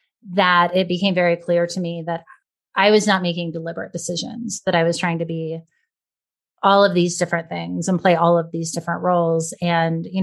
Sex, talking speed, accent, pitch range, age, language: female, 200 wpm, American, 170-235 Hz, 30-49, English